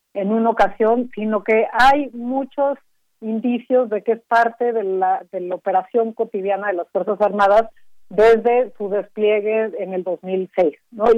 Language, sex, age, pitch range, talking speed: Spanish, female, 40-59, 200-230 Hz, 145 wpm